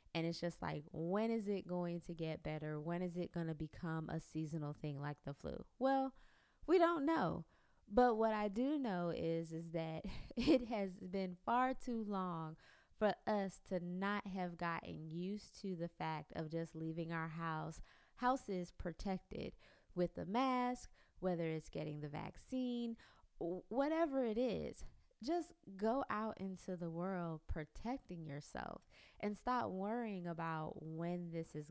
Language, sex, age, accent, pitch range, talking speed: English, female, 20-39, American, 160-205 Hz, 160 wpm